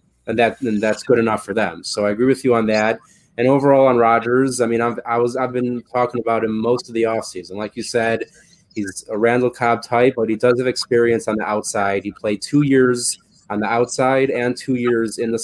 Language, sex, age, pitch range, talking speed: English, male, 20-39, 110-125 Hz, 235 wpm